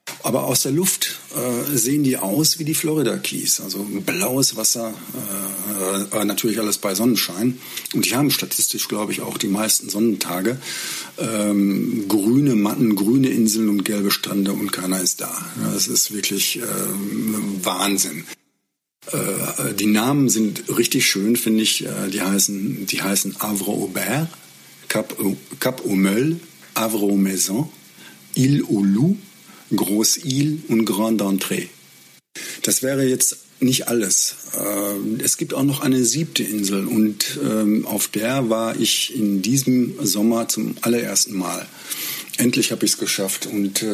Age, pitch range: 50-69, 100-130 Hz